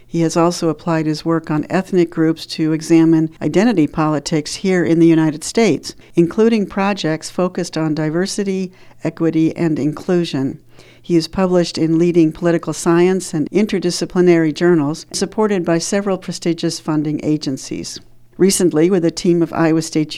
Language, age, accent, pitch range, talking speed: English, 60-79, American, 155-175 Hz, 145 wpm